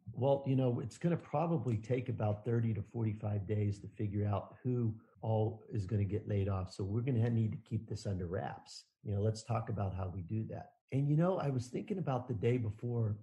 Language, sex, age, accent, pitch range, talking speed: English, male, 50-69, American, 105-140 Hz, 240 wpm